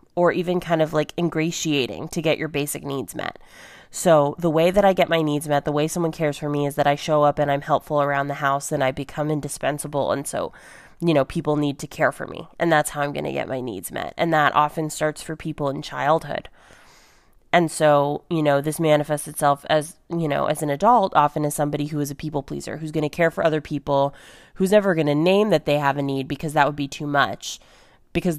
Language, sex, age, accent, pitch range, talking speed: English, female, 20-39, American, 145-170 Hz, 245 wpm